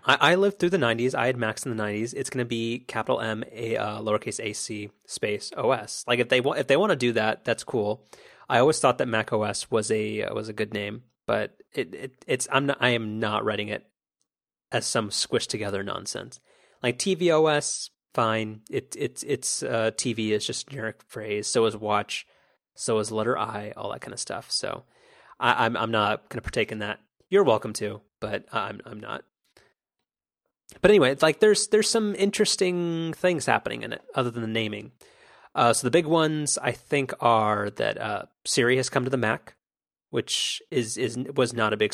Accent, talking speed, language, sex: American, 210 wpm, English, male